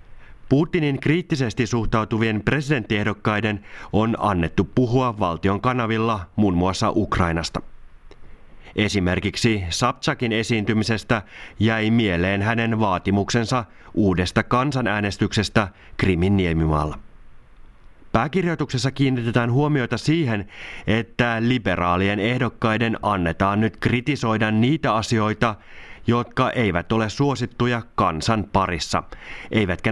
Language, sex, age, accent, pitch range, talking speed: Finnish, male, 30-49, native, 100-125 Hz, 85 wpm